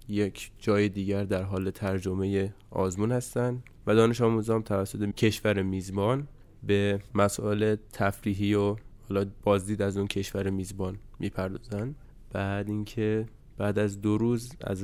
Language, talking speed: Persian, 130 wpm